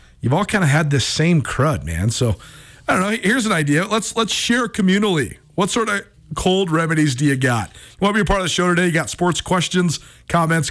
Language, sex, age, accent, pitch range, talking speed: English, male, 40-59, American, 135-185 Hz, 240 wpm